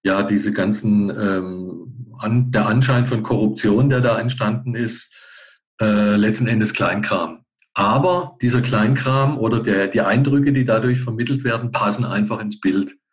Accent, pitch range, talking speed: German, 105-125 Hz, 140 wpm